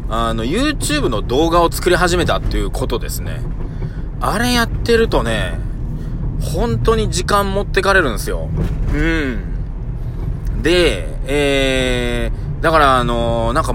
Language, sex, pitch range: Japanese, male, 120-160 Hz